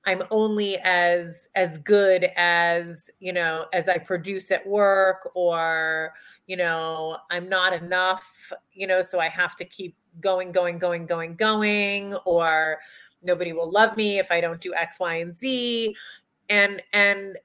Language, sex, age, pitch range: English, female, 30-49, 170-205 Hz